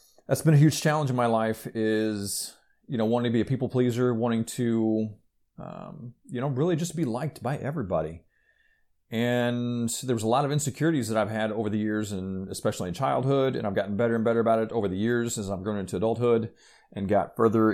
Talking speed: 215 wpm